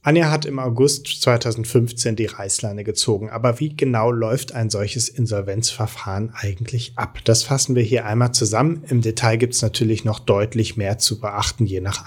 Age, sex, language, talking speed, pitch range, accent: 30-49, male, German, 175 wpm, 110-130 Hz, German